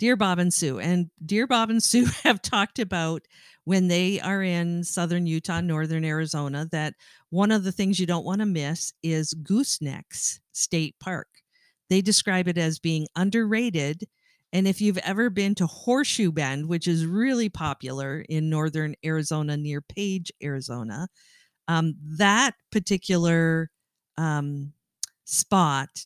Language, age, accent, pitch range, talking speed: English, 50-69, American, 155-190 Hz, 145 wpm